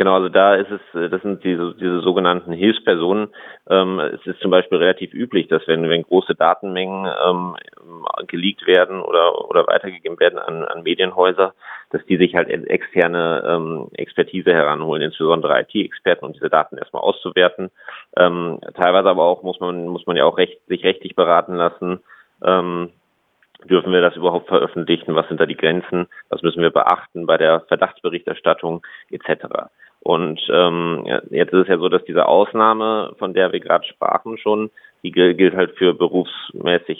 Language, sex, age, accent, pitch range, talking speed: German, male, 30-49, German, 85-100 Hz, 165 wpm